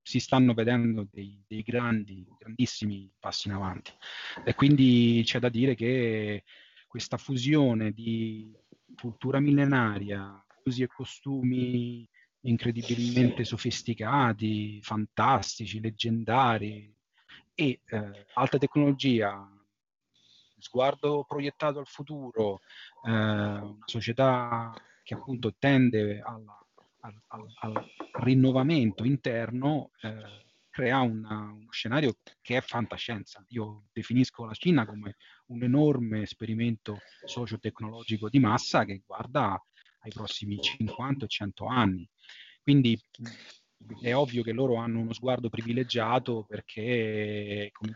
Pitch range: 105-125 Hz